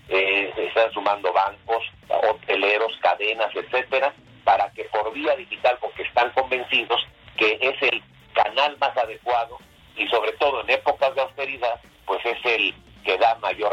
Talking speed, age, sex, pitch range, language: 150 wpm, 50-69, male, 105-140 Hz, Spanish